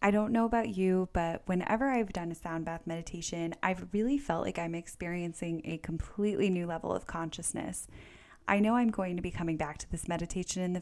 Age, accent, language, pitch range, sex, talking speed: 10-29, American, English, 165-205 Hz, female, 210 wpm